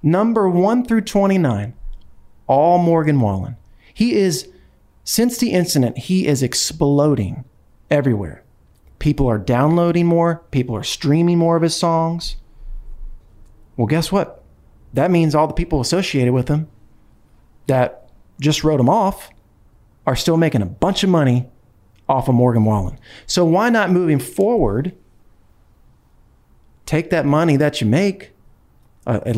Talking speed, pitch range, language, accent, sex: 135 wpm, 115-165 Hz, English, American, male